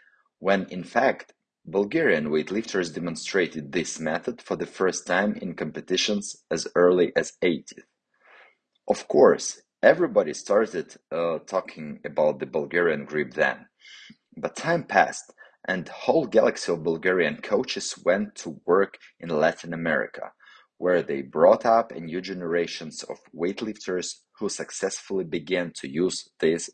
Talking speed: 130 wpm